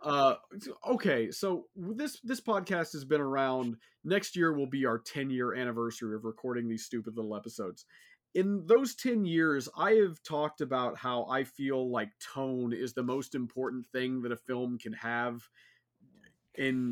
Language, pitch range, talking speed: English, 120-150 Hz, 165 wpm